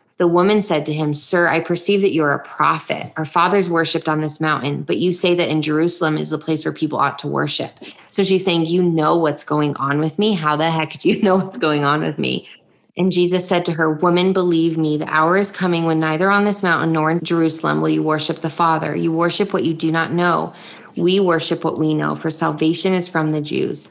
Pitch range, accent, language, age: 155-180 Hz, American, English, 20-39